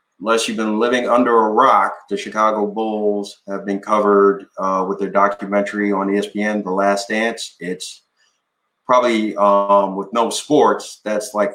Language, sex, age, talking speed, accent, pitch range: English, male, 30-49, 155 wpm, American, 95-110 Hz